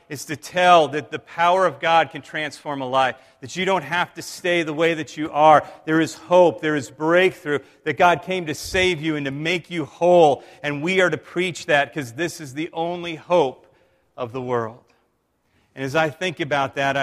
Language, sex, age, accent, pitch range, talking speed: English, male, 40-59, American, 135-165 Hz, 215 wpm